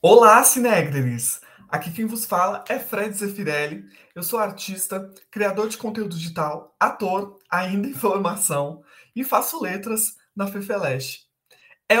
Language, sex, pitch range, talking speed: Portuguese, male, 165-220 Hz, 130 wpm